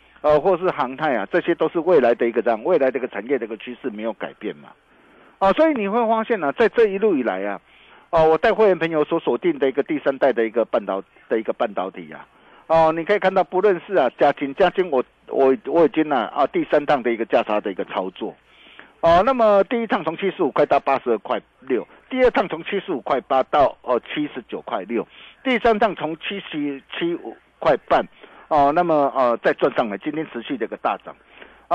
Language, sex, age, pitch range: Chinese, male, 50-69, 140-210 Hz